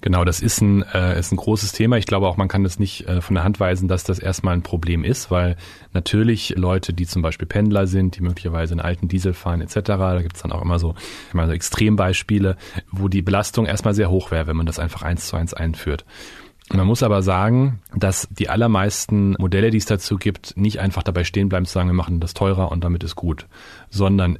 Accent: German